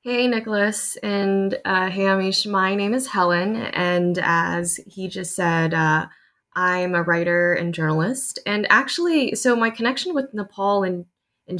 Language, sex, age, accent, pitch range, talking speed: English, female, 20-39, American, 175-205 Hz, 155 wpm